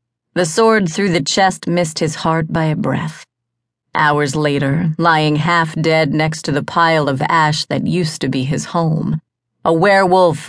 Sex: female